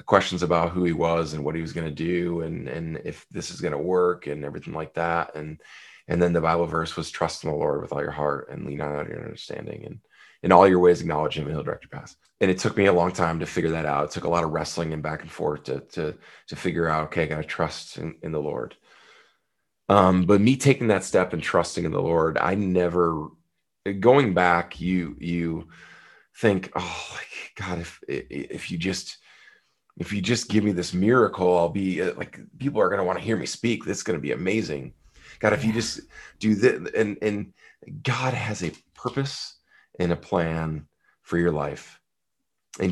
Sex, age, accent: male, 20-39, American